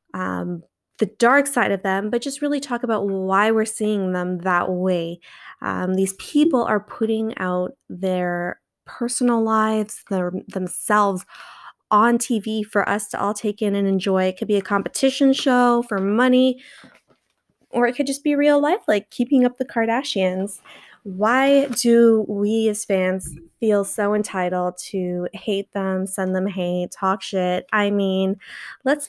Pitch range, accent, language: 195-240 Hz, American, English